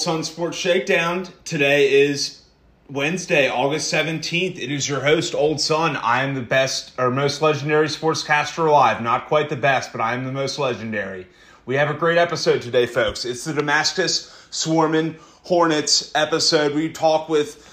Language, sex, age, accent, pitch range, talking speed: English, male, 30-49, American, 135-155 Hz, 170 wpm